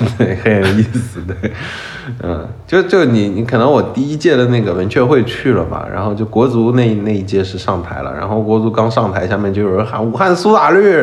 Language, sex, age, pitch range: Chinese, male, 20-39, 90-115 Hz